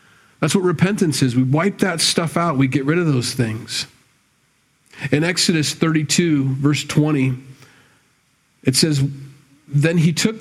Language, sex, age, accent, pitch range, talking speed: English, male, 40-59, American, 125-155 Hz, 145 wpm